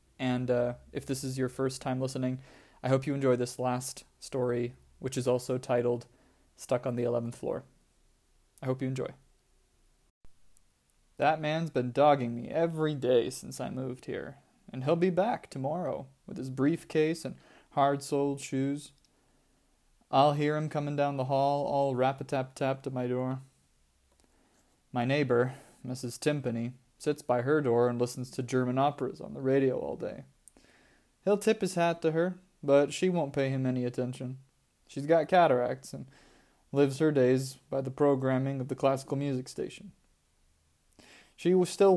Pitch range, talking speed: 125-145 Hz, 165 wpm